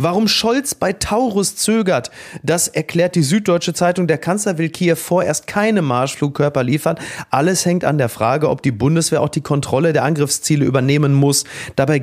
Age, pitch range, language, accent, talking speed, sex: 30-49, 135-170 Hz, German, German, 170 wpm, male